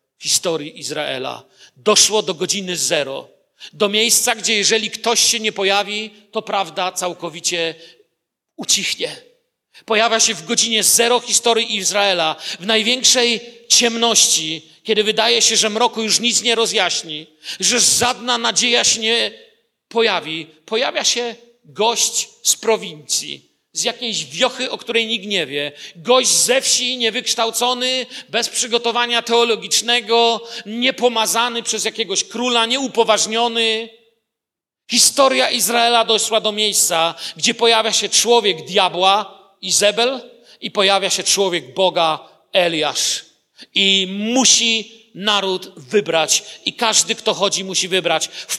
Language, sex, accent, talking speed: Polish, male, native, 120 wpm